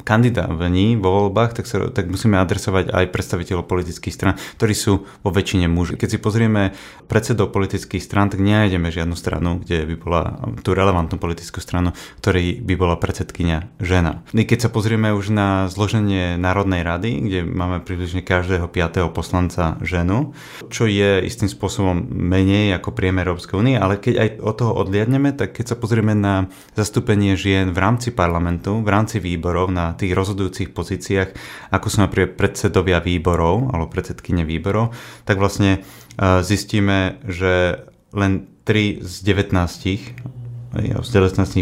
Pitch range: 90-110 Hz